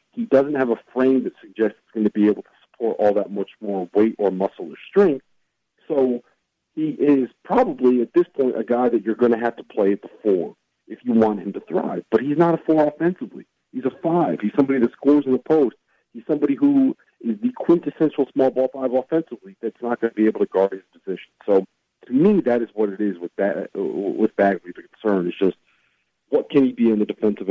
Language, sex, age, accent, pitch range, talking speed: English, male, 40-59, American, 100-135 Hz, 230 wpm